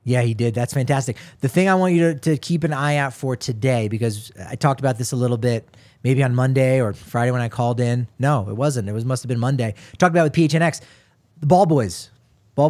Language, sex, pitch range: English, male, 130-170 Hz